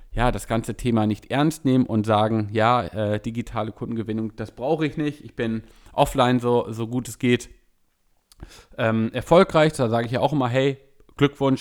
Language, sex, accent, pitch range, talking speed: German, male, German, 110-140 Hz, 180 wpm